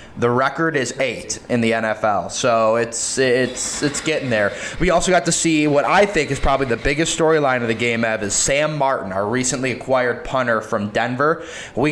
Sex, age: male, 20-39